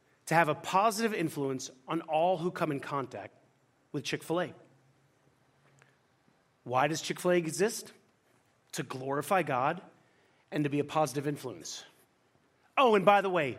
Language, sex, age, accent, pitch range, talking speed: English, male, 30-49, American, 150-205 Hz, 135 wpm